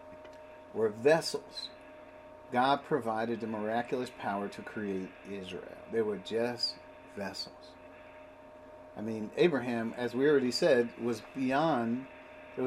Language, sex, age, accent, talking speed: English, male, 50-69, American, 115 wpm